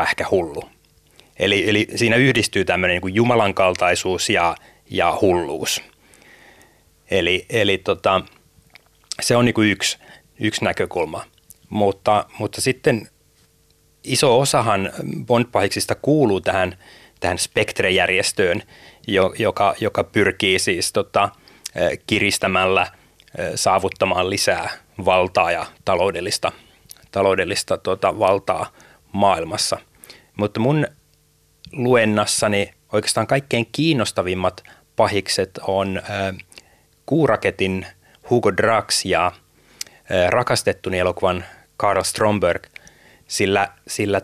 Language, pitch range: Finnish, 90-115 Hz